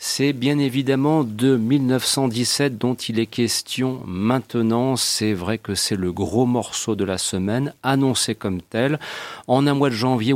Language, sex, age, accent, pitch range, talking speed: French, male, 40-59, French, 110-130 Hz, 160 wpm